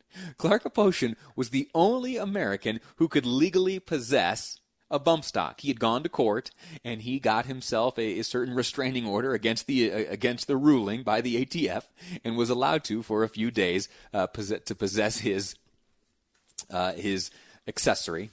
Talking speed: 170 wpm